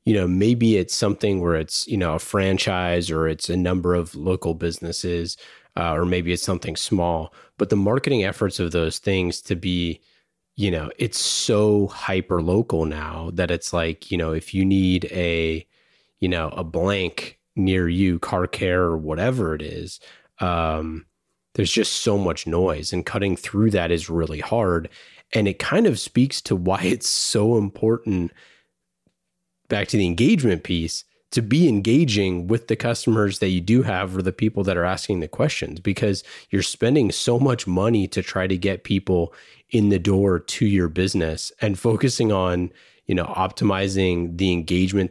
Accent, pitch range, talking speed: American, 85-105 Hz, 175 wpm